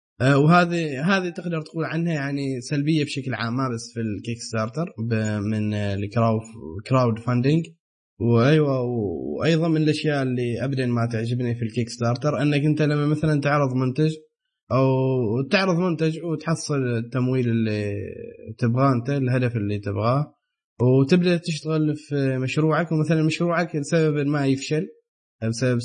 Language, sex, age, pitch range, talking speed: Arabic, male, 20-39, 120-155 Hz, 135 wpm